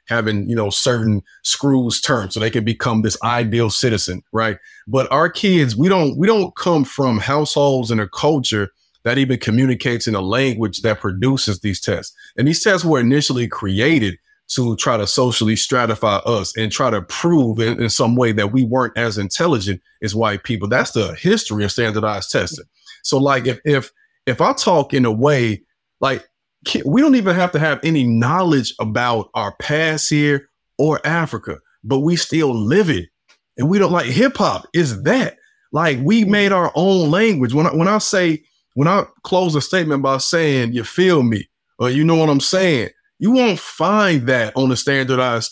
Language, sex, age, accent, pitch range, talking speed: English, male, 30-49, American, 115-170 Hz, 185 wpm